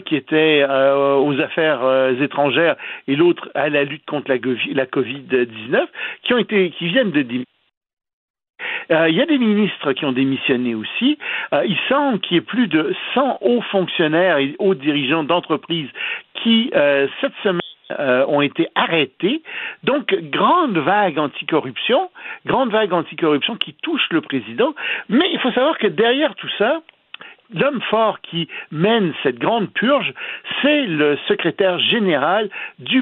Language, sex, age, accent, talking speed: French, male, 60-79, French, 160 wpm